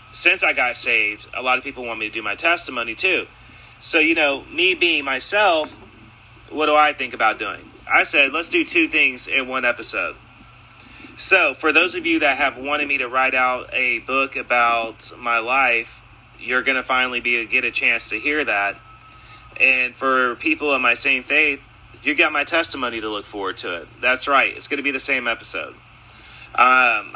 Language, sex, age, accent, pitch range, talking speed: English, male, 30-49, American, 110-135 Hz, 200 wpm